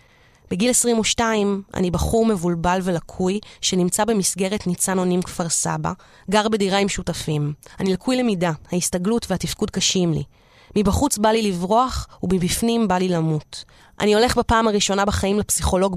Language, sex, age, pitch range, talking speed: Hebrew, female, 20-39, 175-215 Hz, 140 wpm